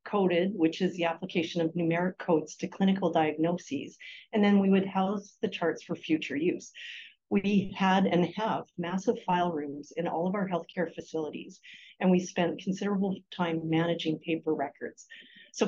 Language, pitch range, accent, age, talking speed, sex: English, 165-205 Hz, American, 40-59, 165 wpm, female